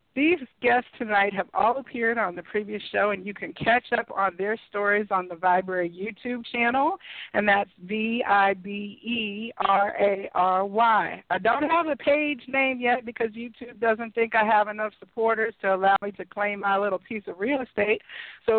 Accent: American